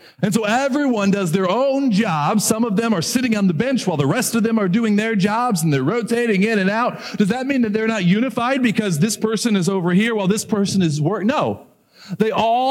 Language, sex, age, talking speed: English, male, 40-59, 240 wpm